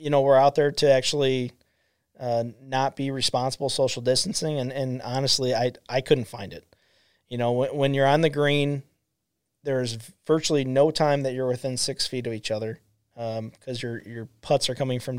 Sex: male